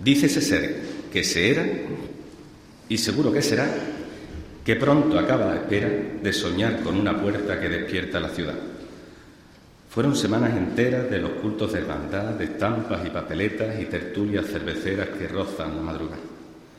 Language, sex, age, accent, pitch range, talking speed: Spanish, male, 50-69, Spanish, 95-110 Hz, 155 wpm